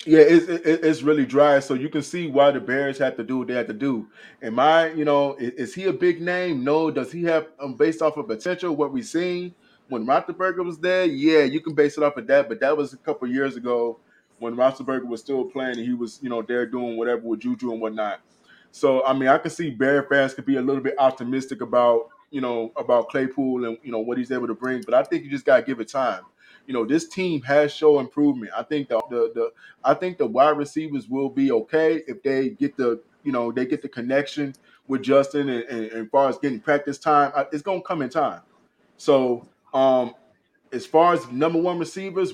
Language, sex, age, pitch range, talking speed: English, male, 20-39, 130-160 Hz, 240 wpm